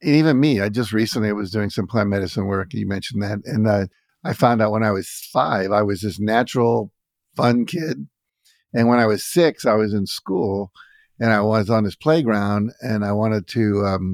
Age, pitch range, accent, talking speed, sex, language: 50-69, 105-120 Hz, American, 215 wpm, male, English